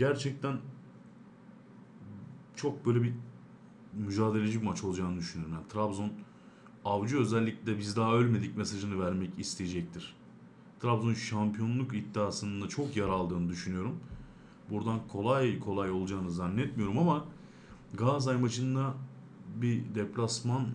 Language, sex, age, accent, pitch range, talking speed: Turkish, male, 40-59, native, 100-130 Hz, 105 wpm